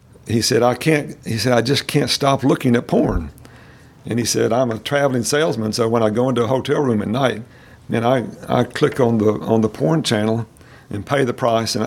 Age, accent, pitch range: 50-69, American, 110-130 Hz